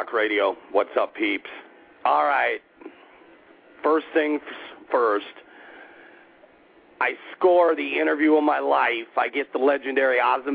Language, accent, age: English, American, 50-69